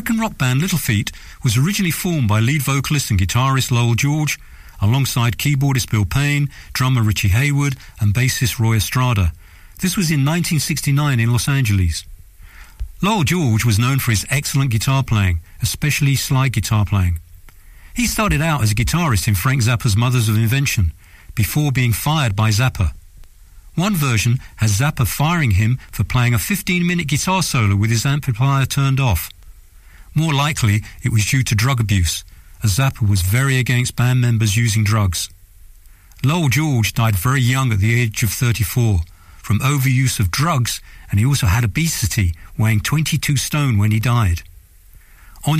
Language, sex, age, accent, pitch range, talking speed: English, male, 50-69, British, 100-140 Hz, 160 wpm